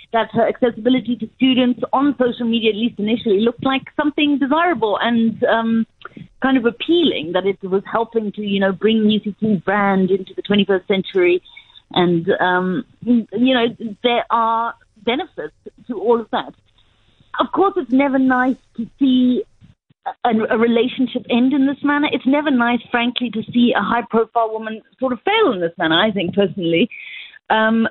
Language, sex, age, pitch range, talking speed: English, female, 40-59, 190-250 Hz, 170 wpm